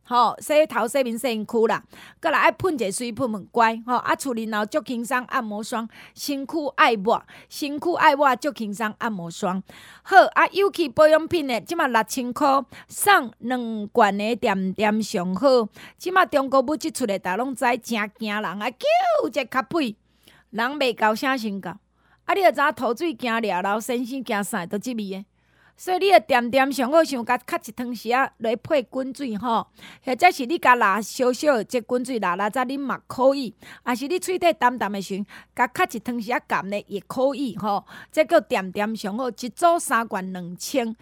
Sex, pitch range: female, 215-285 Hz